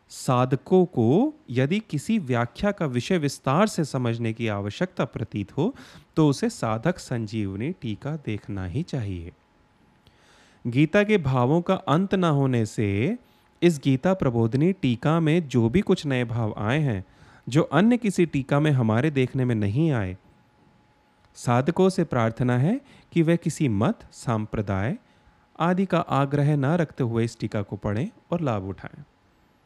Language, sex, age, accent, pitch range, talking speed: Hindi, male, 30-49, native, 110-155 Hz, 150 wpm